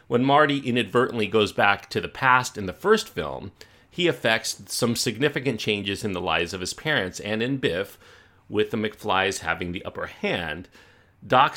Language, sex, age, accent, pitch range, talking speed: English, male, 40-59, American, 95-130 Hz, 175 wpm